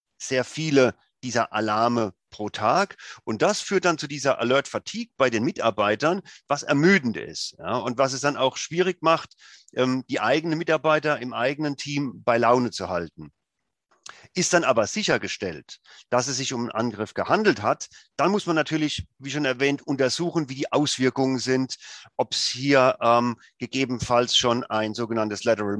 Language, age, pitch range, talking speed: German, 40-59, 115-140 Hz, 160 wpm